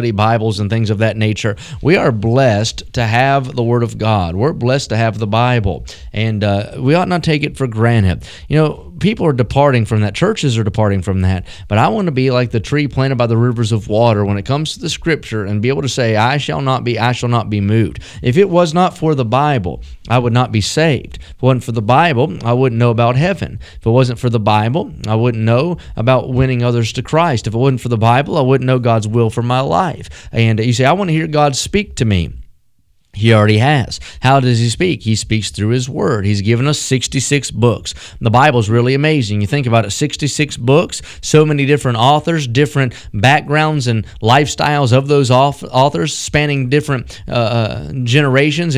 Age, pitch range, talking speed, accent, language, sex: 30-49, 110-145 Hz, 225 wpm, American, English, male